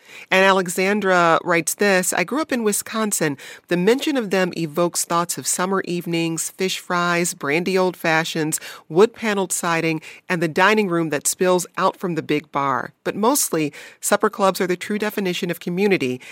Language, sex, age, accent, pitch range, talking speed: English, female, 40-59, American, 155-205 Hz, 170 wpm